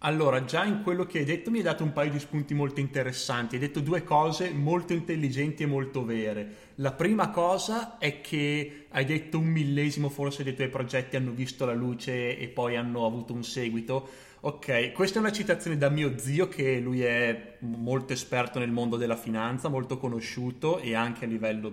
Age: 20-39